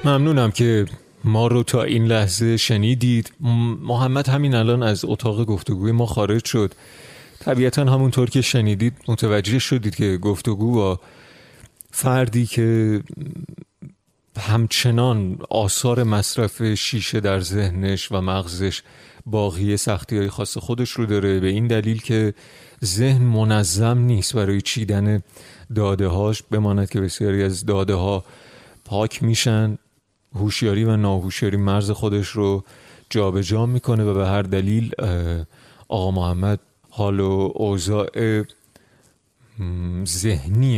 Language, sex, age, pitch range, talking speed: Persian, male, 30-49, 100-120 Hz, 120 wpm